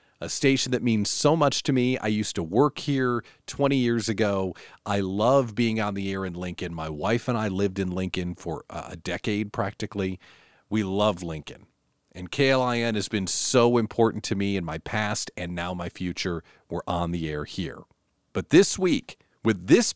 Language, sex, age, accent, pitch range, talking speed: English, male, 40-59, American, 95-135 Hz, 190 wpm